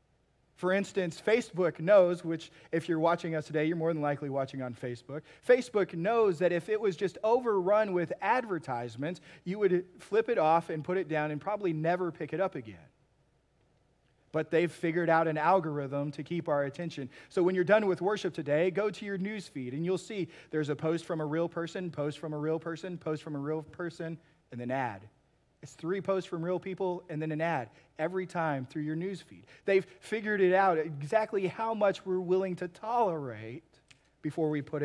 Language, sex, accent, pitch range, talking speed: English, male, American, 150-190 Hz, 200 wpm